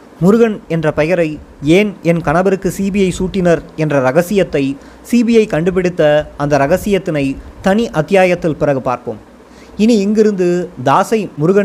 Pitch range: 150-200 Hz